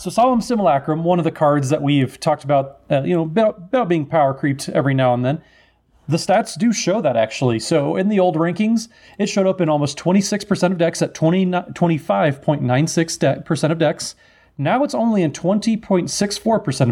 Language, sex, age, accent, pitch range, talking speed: English, male, 30-49, American, 135-175 Hz, 180 wpm